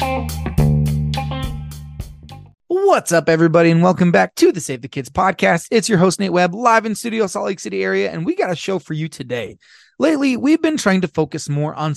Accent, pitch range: American, 135-190 Hz